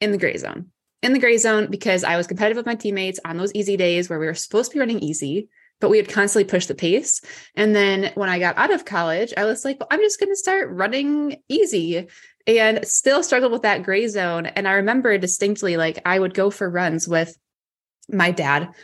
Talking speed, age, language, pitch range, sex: 230 wpm, 20-39, English, 180-230 Hz, female